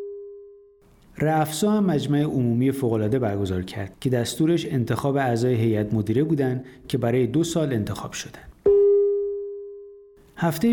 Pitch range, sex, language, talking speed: 120-165 Hz, male, Persian, 115 wpm